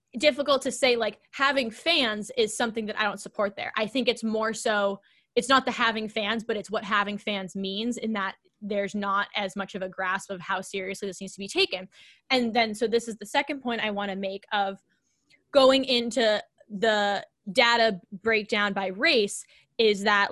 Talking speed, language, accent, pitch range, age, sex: 200 wpm, English, American, 200-240 Hz, 10-29, female